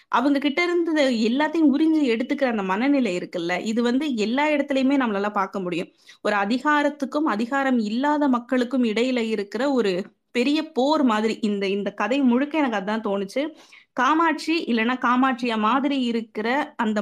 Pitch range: 220-295 Hz